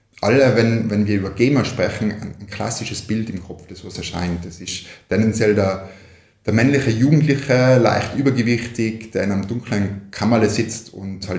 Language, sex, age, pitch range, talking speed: German, male, 20-39, 90-115 Hz, 175 wpm